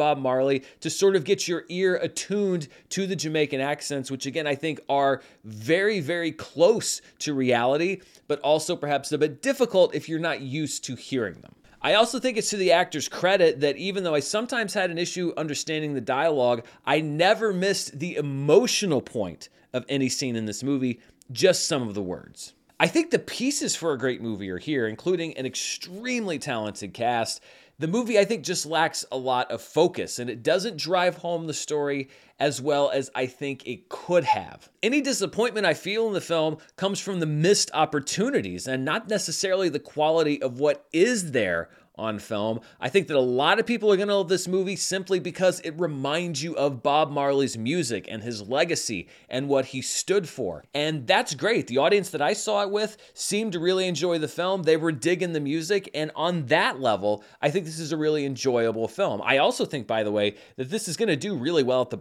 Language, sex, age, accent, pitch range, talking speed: English, male, 30-49, American, 135-185 Hz, 205 wpm